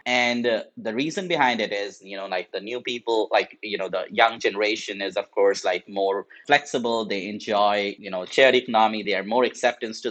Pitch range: 100-120 Hz